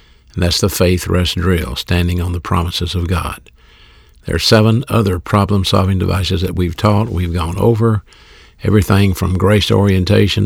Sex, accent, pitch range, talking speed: male, American, 90-110 Hz, 160 wpm